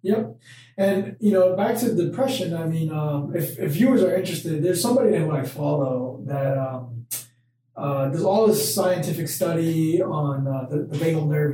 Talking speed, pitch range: 175 wpm, 140-175 Hz